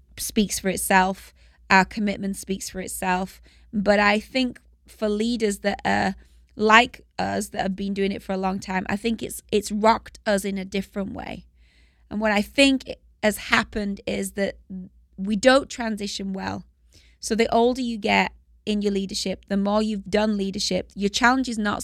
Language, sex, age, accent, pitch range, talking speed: English, female, 20-39, British, 190-215 Hz, 180 wpm